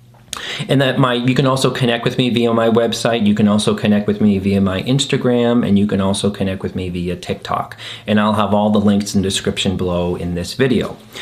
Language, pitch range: English, 100-135 Hz